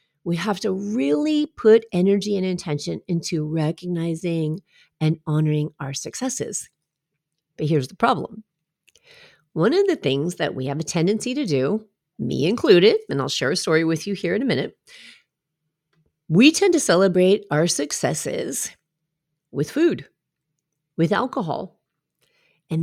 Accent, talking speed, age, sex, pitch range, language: American, 140 wpm, 40-59, female, 155-210 Hz, English